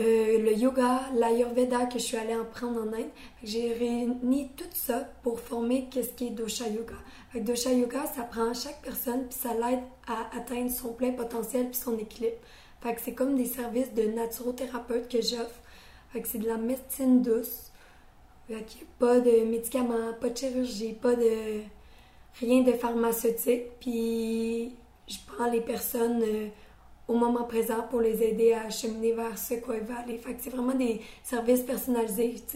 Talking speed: 175 wpm